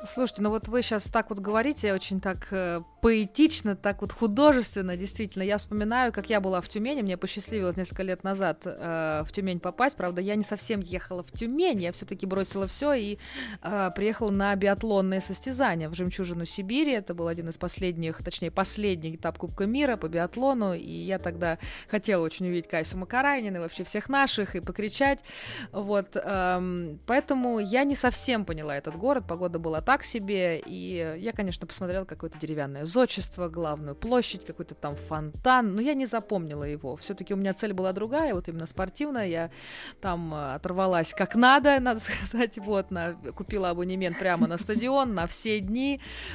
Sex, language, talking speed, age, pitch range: female, Russian, 175 wpm, 20-39, 175-225 Hz